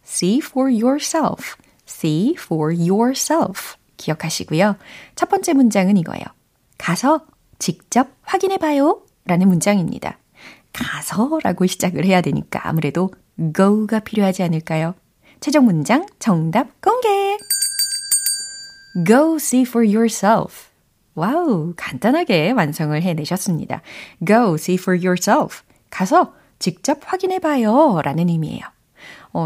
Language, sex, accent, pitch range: Korean, female, native, 170-270 Hz